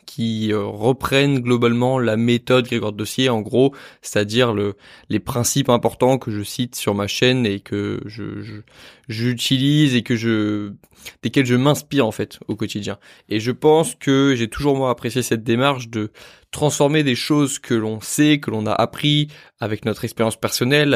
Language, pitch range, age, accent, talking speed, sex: French, 110-135 Hz, 20-39, French, 170 wpm, male